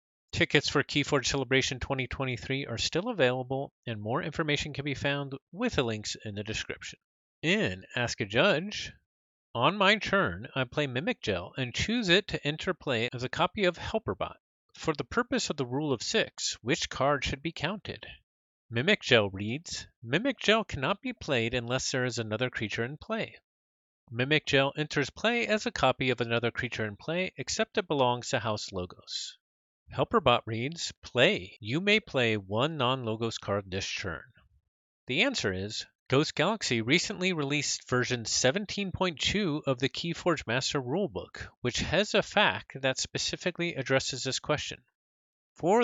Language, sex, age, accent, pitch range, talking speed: English, male, 40-59, American, 115-155 Hz, 160 wpm